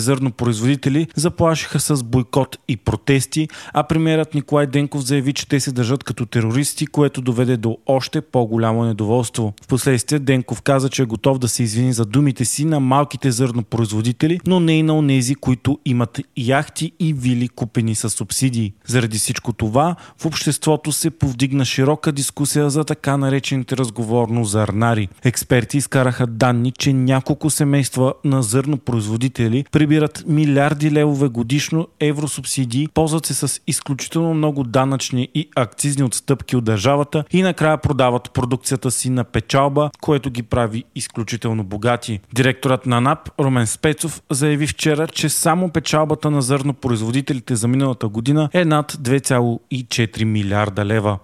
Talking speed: 140 wpm